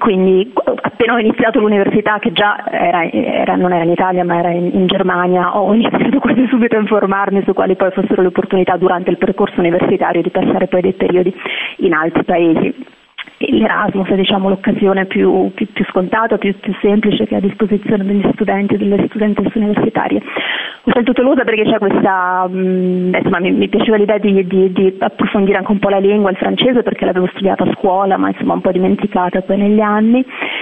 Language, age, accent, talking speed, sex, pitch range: Italian, 30-49, native, 195 wpm, female, 190-210 Hz